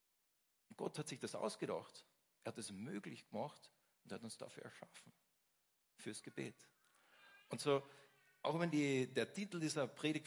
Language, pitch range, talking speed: German, 130-165 Hz, 145 wpm